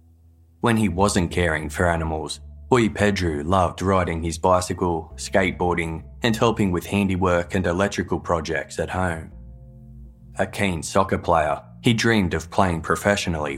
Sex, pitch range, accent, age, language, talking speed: male, 80-95 Hz, Australian, 20-39, English, 135 wpm